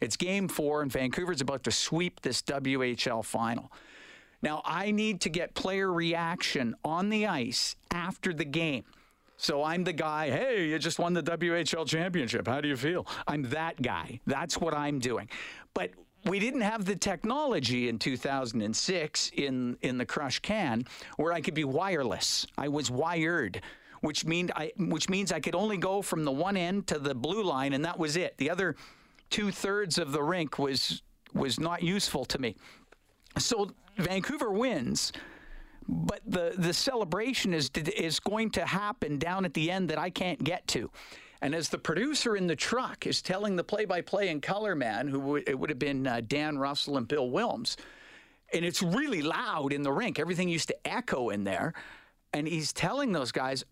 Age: 50-69